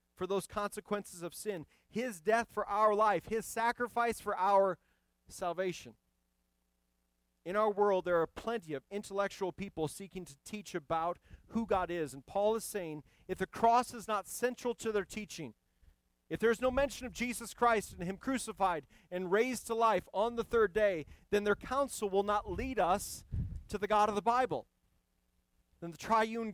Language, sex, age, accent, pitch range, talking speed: English, male, 40-59, American, 150-220 Hz, 180 wpm